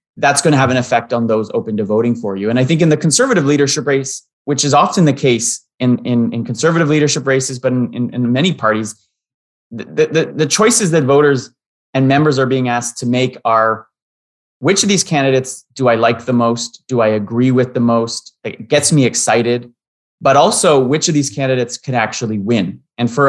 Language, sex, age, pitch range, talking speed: English, male, 30-49, 110-140 Hz, 210 wpm